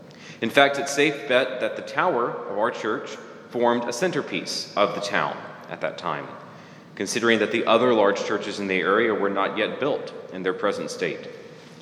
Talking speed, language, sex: 190 wpm, English, male